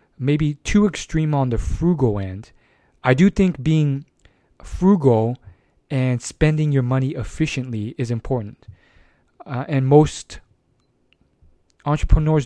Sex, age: male, 20-39